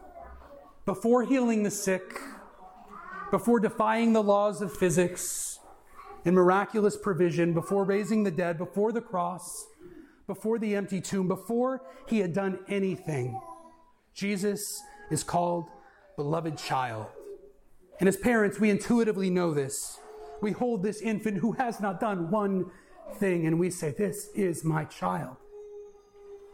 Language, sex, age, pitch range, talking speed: English, male, 40-59, 175-235 Hz, 130 wpm